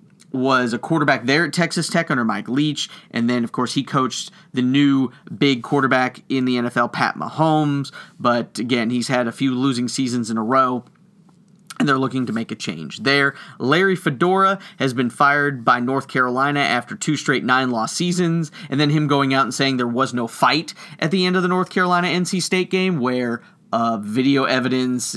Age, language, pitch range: 30-49, English, 130-175 Hz